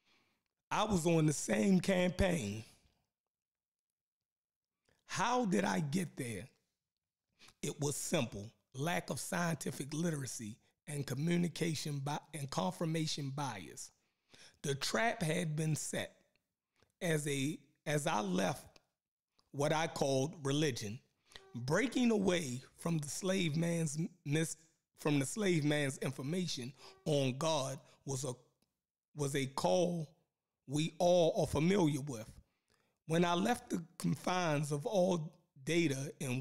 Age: 30-49